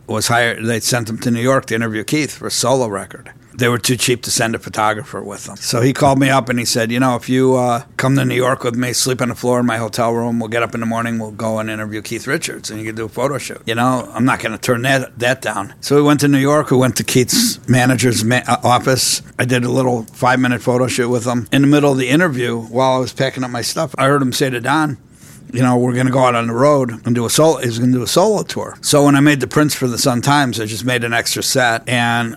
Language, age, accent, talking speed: English, 60-79, American, 295 wpm